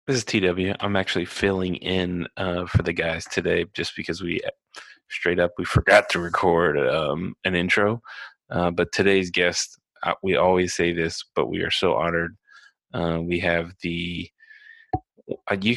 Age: 30-49